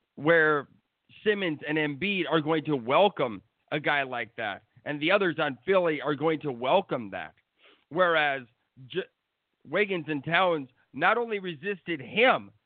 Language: English